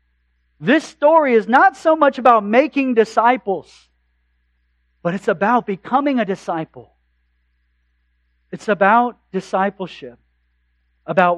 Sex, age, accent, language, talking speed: male, 40-59, American, English, 100 wpm